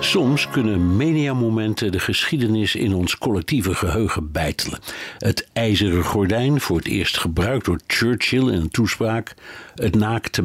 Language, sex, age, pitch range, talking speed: Dutch, male, 60-79, 90-110 Hz, 140 wpm